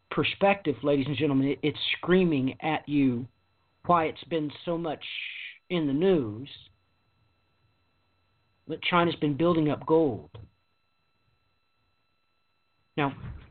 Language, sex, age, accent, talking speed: English, male, 50-69, American, 100 wpm